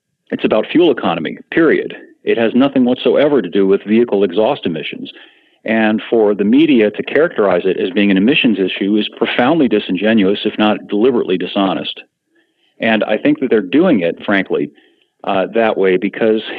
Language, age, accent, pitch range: English, 50-69, American, 105-125 Hz